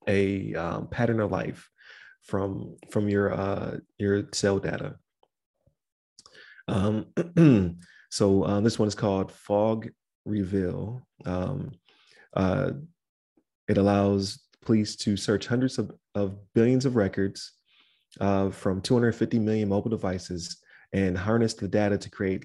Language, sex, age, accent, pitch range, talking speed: English, male, 30-49, American, 95-110 Hz, 125 wpm